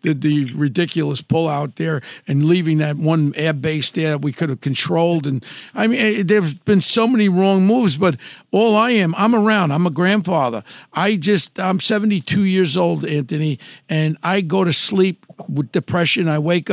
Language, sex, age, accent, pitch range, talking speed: English, male, 60-79, American, 175-225 Hz, 185 wpm